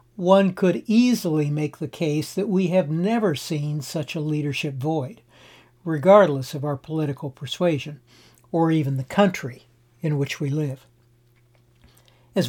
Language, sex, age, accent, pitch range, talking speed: English, male, 60-79, American, 135-185 Hz, 140 wpm